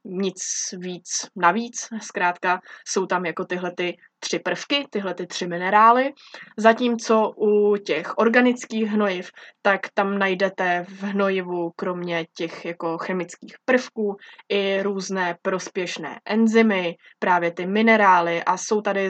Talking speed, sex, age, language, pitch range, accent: 125 wpm, female, 20-39, Czech, 175-205 Hz, native